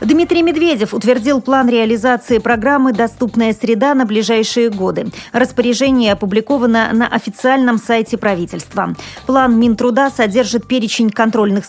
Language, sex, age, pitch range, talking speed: Russian, female, 30-49, 205-250 Hz, 115 wpm